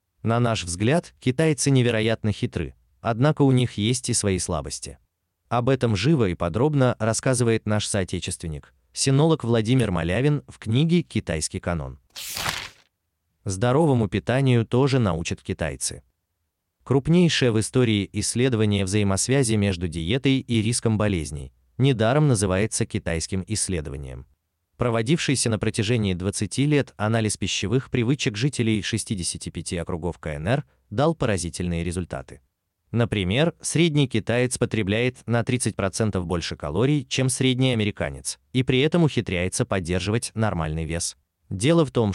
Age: 30-49